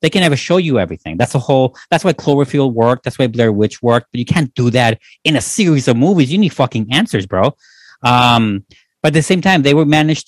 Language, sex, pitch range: English, male, 110-145 Hz